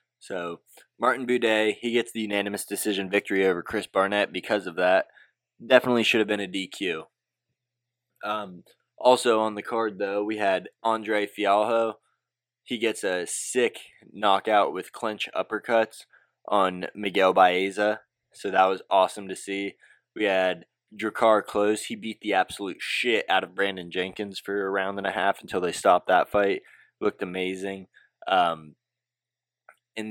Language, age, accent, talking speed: English, 20-39, American, 150 wpm